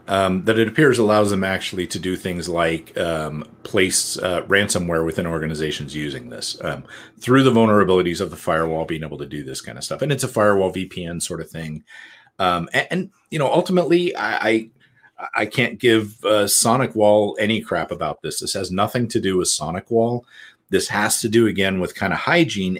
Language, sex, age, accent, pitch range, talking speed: English, male, 40-59, American, 95-140 Hz, 195 wpm